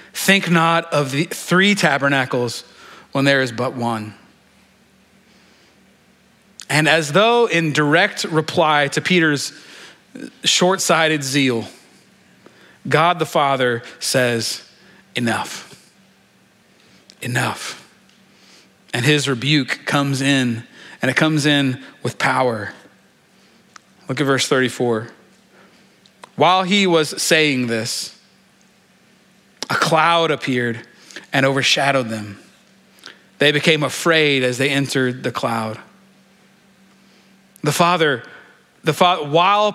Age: 30-49